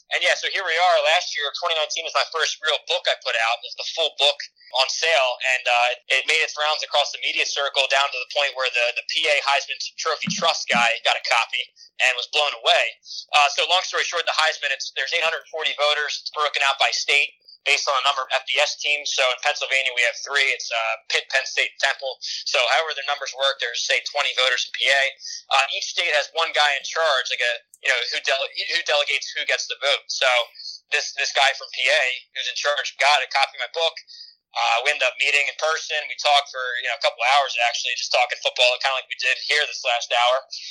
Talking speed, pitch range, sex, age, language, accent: 240 wpm, 130-160 Hz, male, 20-39, English, American